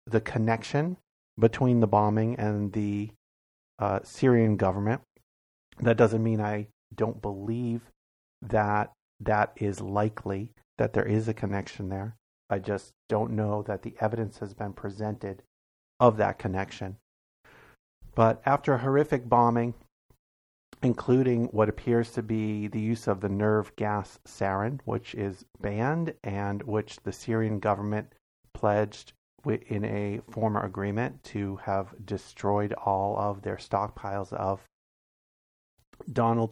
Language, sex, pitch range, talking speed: English, male, 100-120 Hz, 130 wpm